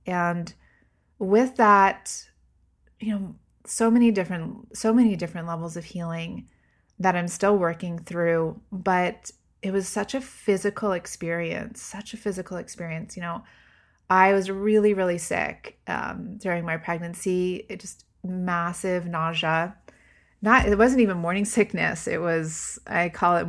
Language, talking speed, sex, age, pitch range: English, 145 wpm, female, 30-49, 170-210 Hz